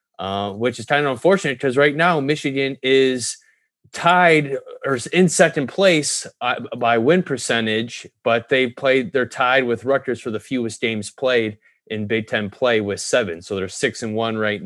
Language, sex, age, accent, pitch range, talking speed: English, male, 30-49, American, 105-125 Hz, 180 wpm